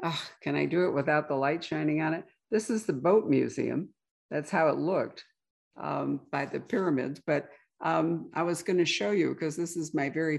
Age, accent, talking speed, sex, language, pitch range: 60-79, American, 210 wpm, female, English, 140-170 Hz